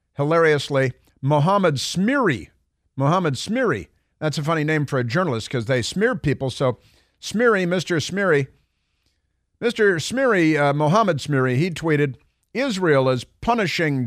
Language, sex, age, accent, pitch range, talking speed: English, male, 50-69, American, 120-165 Hz, 130 wpm